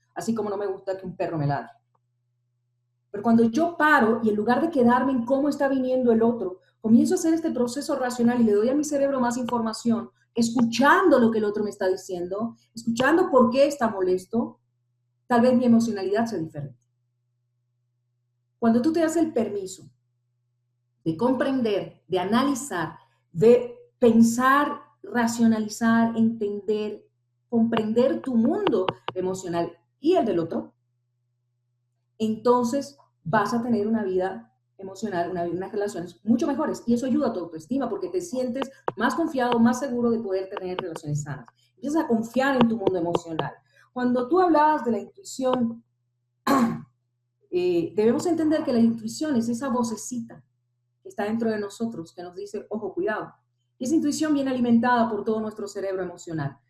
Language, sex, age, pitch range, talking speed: Spanish, female, 40-59, 170-250 Hz, 160 wpm